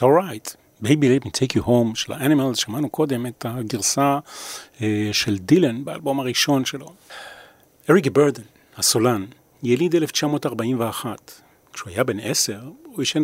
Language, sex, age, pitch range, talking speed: Hebrew, male, 40-59, 110-150 Hz, 140 wpm